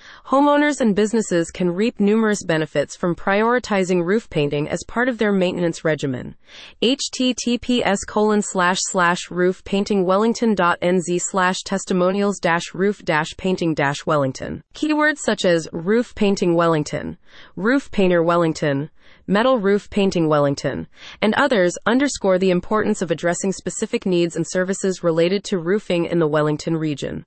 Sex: female